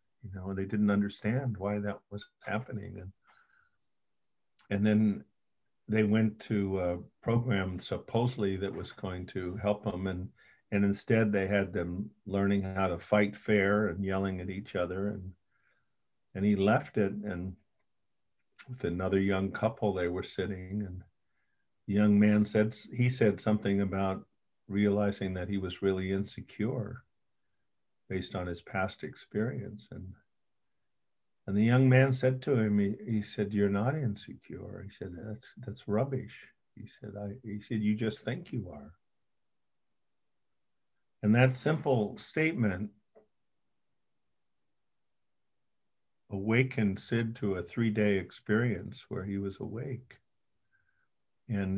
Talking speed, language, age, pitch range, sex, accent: 135 wpm, English, 50-69, 95-110 Hz, male, American